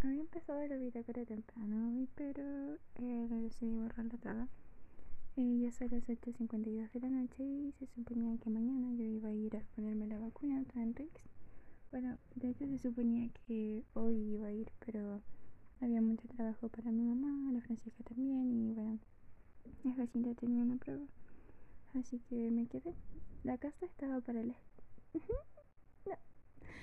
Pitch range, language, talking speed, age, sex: 225-250 Hz, Spanish, 170 wpm, 20-39, female